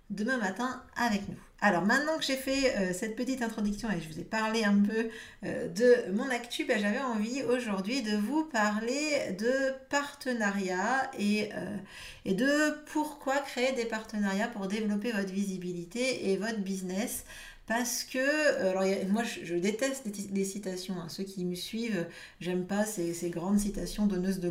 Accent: French